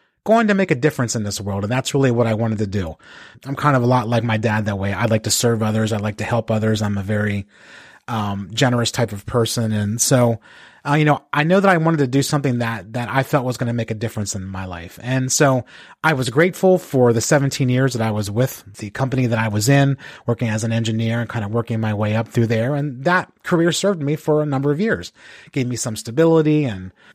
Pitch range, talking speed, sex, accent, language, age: 115-145 Hz, 260 wpm, male, American, English, 30-49